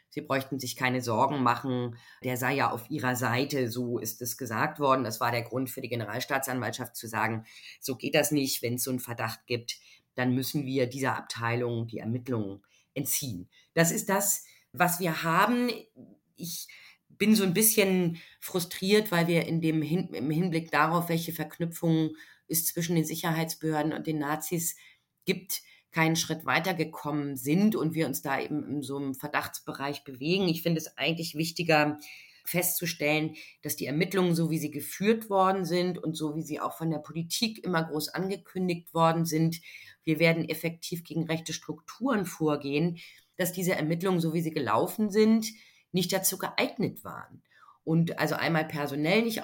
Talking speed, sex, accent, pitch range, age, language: 170 wpm, female, German, 135-175 Hz, 30-49, German